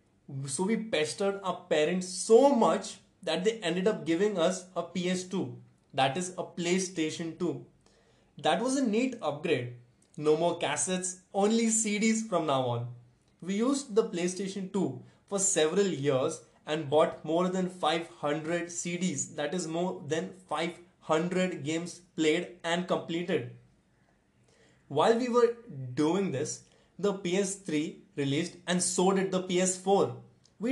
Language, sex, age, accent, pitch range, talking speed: English, male, 20-39, Indian, 155-195 Hz, 135 wpm